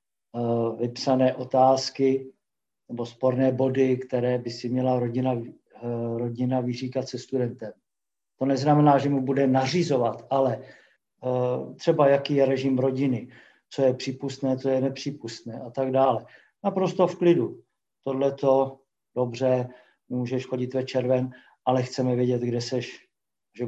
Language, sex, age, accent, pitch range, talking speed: English, male, 50-69, Czech, 125-140 Hz, 130 wpm